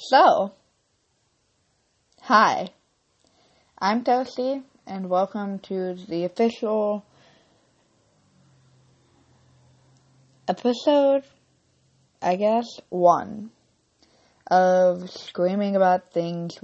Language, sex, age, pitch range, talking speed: English, female, 20-39, 170-210 Hz, 60 wpm